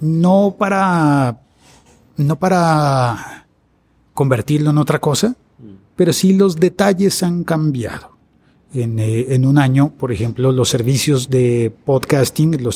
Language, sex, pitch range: Spanish, male, 120-150 Hz